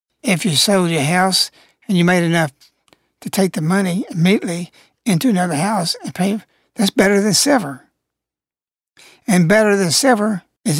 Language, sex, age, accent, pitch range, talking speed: English, male, 60-79, American, 170-220 Hz, 155 wpm